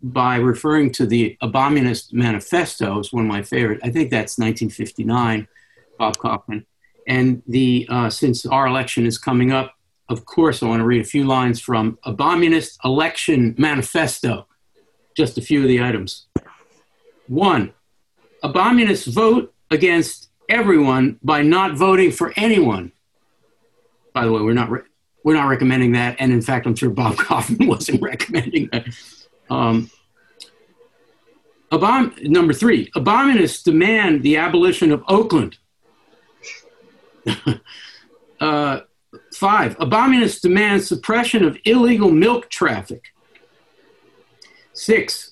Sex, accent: male, American